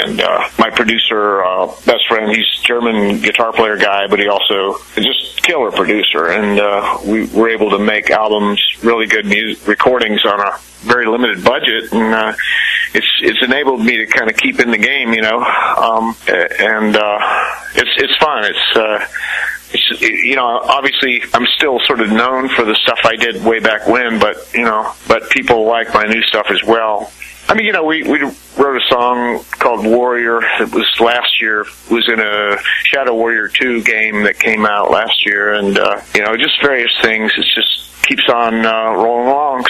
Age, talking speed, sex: 40-59, 195 wpm, male